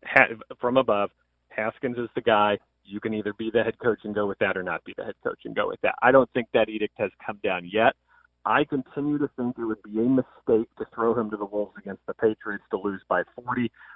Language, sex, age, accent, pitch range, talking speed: English, male, 40-59, American, 105-125 Hz, 250 wpm